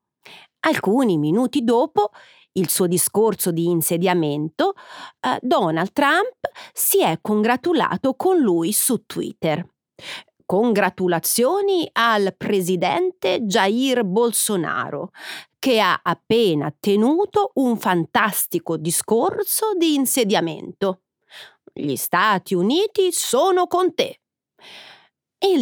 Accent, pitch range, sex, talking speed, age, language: native, 180-285 Hz, female, 90 wpm, 40-59, Italian